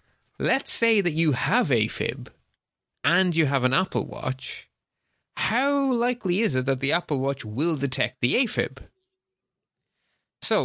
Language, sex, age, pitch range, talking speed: English, male, 30-49, 120-165 Hz, 140 wpm